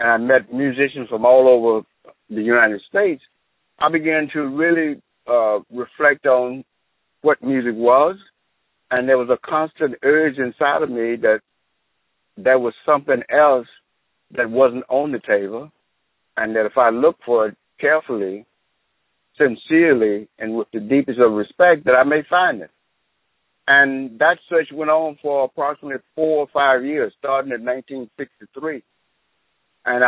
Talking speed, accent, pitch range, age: 150 wpm, American, 125-150 Hz, 60-79